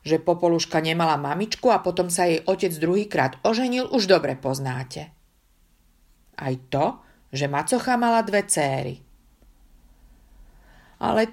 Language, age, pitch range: Slovak, 50-69, 145-195 Hz